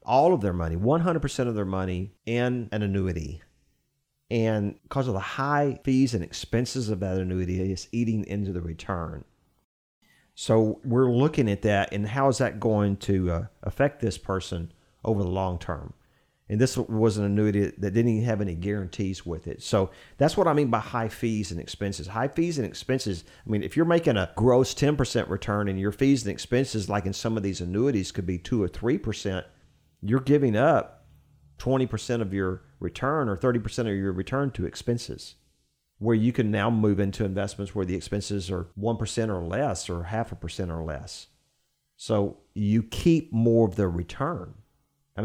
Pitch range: 95-125 Hz